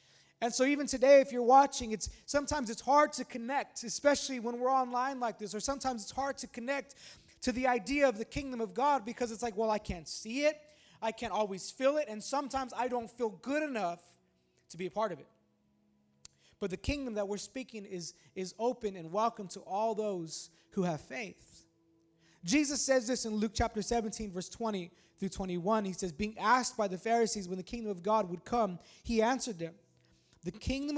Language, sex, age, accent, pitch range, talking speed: English, male, 20-39, American, 185-240 Hz, 205 wpm